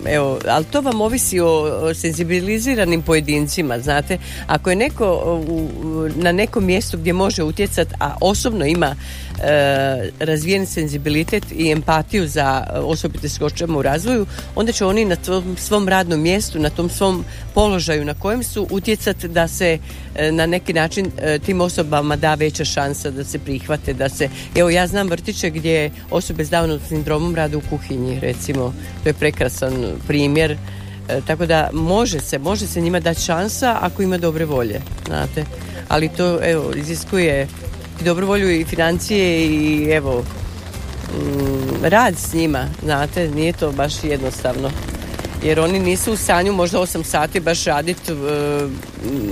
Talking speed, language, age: 150 wpm, Croatian, 50-69